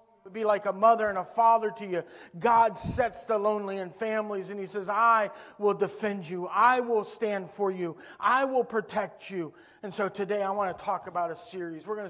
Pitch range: 165-220 Hz